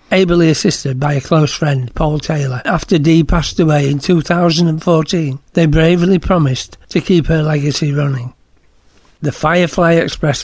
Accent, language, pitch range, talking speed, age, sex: British, English, 140-165 Hz, 145 wpm, 60-79, male